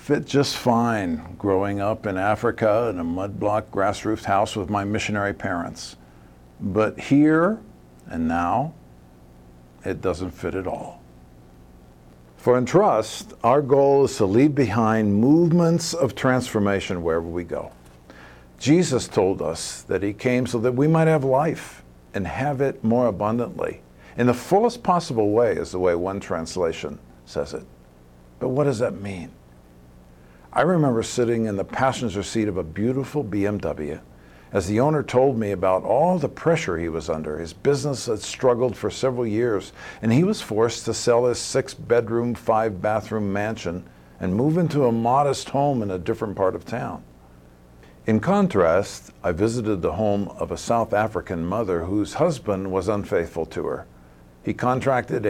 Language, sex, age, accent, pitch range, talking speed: English, male, 50-69, American, 75-125 Hz, 160 wpm